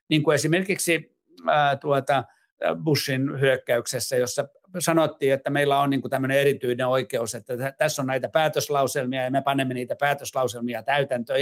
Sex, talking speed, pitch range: male, 140 wpm, 130-160 Hz